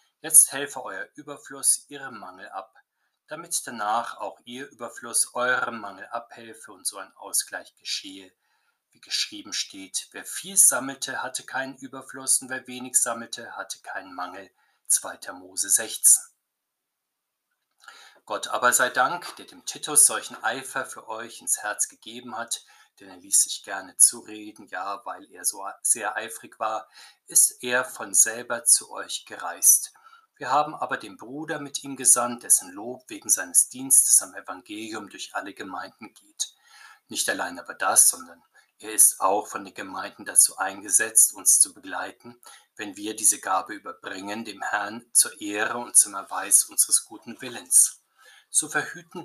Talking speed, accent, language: 155 wpm, German, German